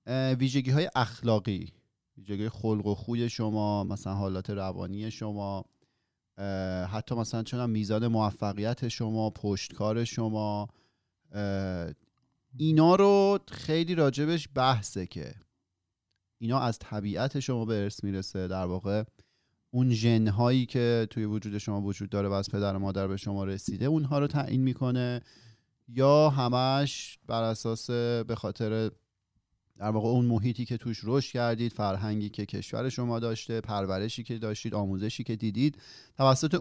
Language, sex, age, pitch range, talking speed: Persian, male, 30-49, 105-130 Hz, 130 wpm